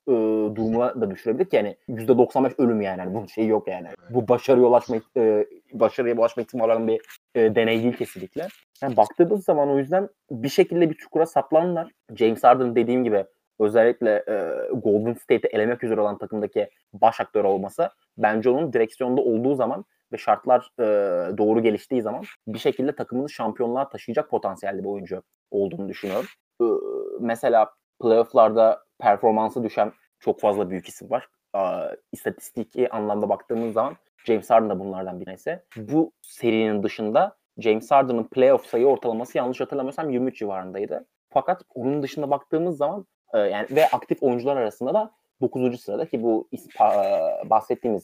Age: 30-49